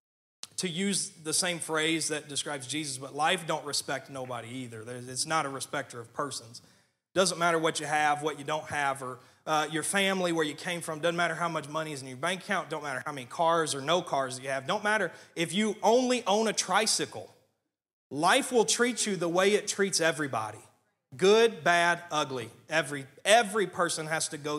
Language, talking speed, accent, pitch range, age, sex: English, 205 wpm, American, 130-180 Hz, 30-49, male